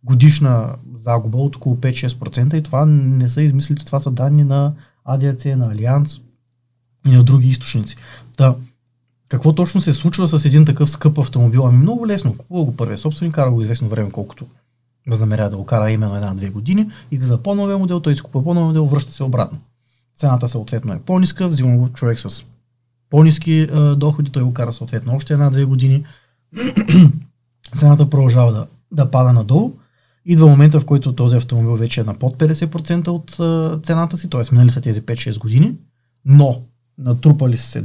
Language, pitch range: Bulgarian, 120-150 Hz